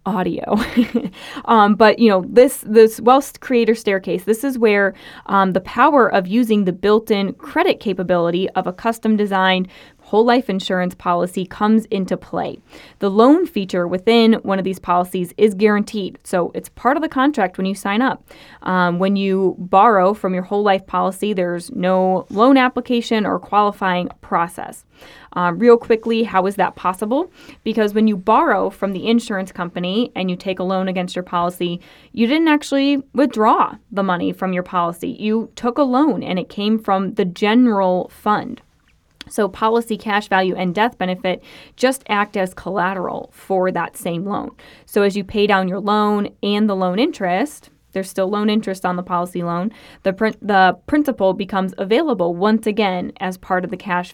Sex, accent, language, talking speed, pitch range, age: female, American, English, 175 wpm, 185-225 Hz, 20-39